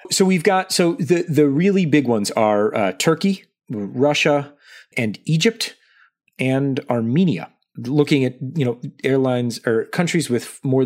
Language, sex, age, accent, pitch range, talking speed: English, male, 30-49, American, 115-160 Hz, 145 wpm